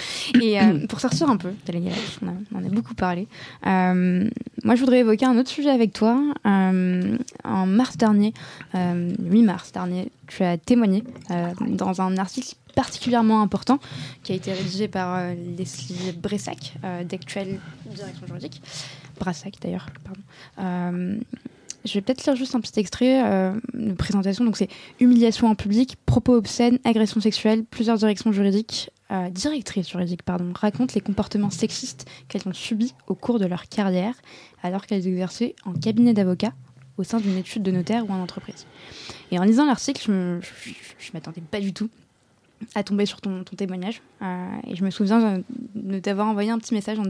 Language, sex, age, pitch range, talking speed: French, female, 20-39, 185-225 Hz, 185 wpm